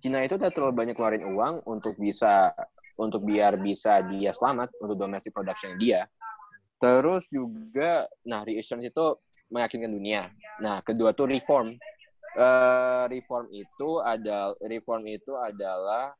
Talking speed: 135 wpm